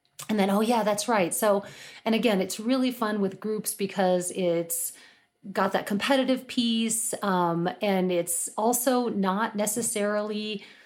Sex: female